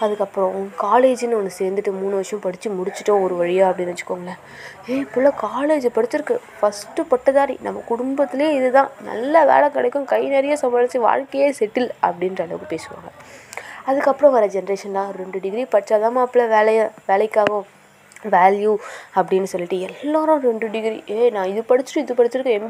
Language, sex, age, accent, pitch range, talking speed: Tamil, female, 20-39, native, 205-260 Hz, 145 wpm